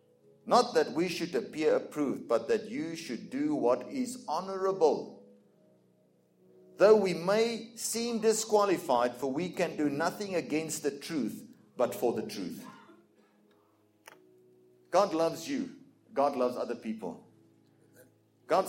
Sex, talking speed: male, 125 wpm